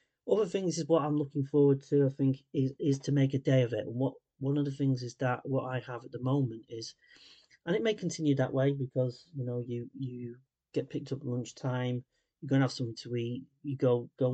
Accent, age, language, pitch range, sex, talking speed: British, 30-49, English, 120-140 Hz, male, 250 wpm